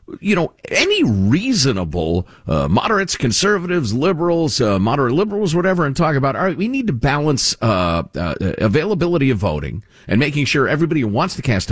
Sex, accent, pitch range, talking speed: male, American, 100-170 Hz, 175 wpm